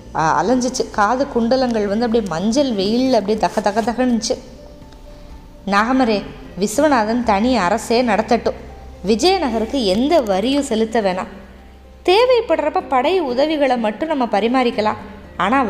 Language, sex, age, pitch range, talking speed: Tamil, female, 20-39, 215-275 Hz, 105 wpm